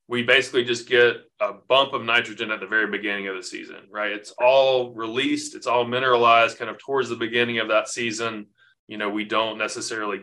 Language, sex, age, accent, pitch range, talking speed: English, male, 20-39, American, 110-125 Hz, 205 wpm